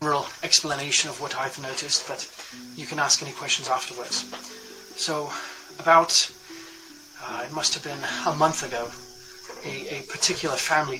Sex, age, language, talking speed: male, 30-49, English, 145 wpm